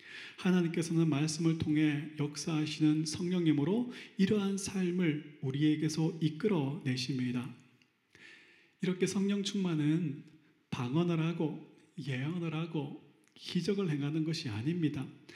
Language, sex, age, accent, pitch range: Korean, male, 30-49, native, 150-185 Hz